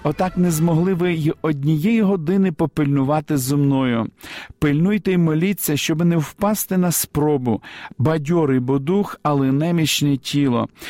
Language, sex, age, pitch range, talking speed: Ukrainian, male, 50-69, 140-180 Hz, 130 wpm